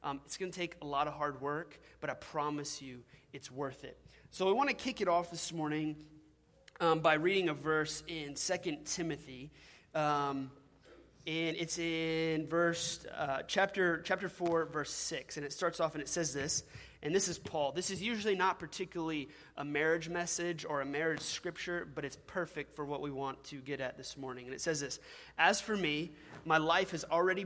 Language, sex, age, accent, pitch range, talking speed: English, male, 30-49, American, 145-170 Hz, 200 wpm